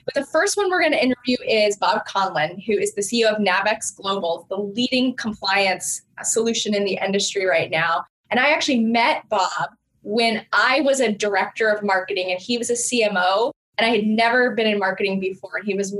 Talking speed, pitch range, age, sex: 205 wpm, 195-250 Hz, 10-29, female